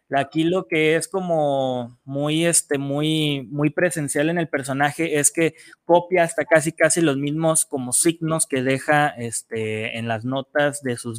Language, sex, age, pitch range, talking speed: Spanish, male, 20-39, 130-165 Hz, 165 wpm